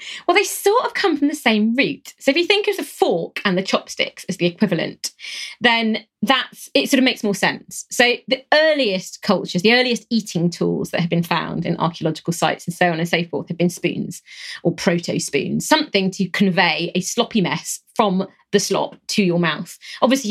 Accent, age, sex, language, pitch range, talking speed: British, 30-49, female, English, 175-245 Hz, 205 wpm